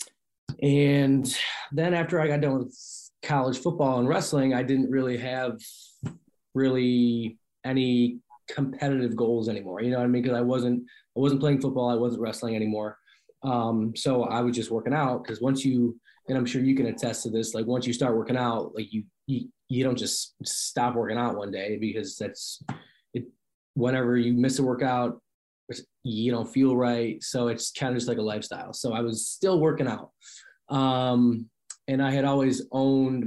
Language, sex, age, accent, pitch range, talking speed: English, male, 20-39, American, 115-135 Hz, 185 wpm